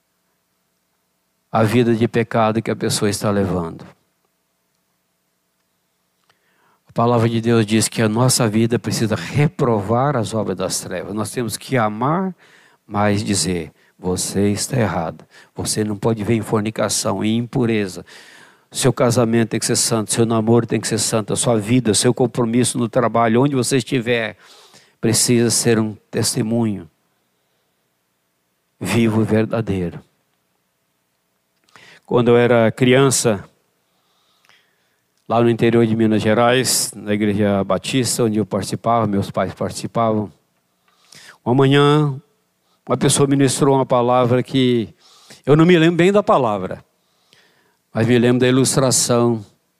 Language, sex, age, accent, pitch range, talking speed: Portuguese, male, 60-79, Brazilian, 90-125 Hz, 130 wpm